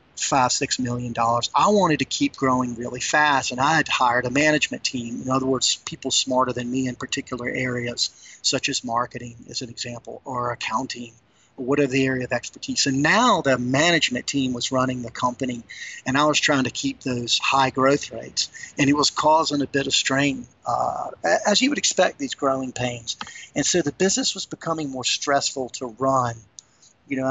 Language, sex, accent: English, male, American